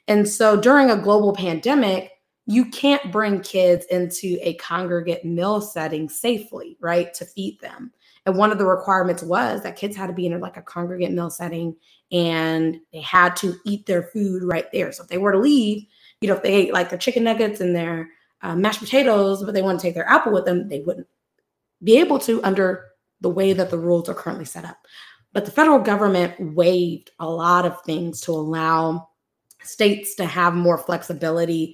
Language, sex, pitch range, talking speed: English, female, 175-210 Hz, 200 wpm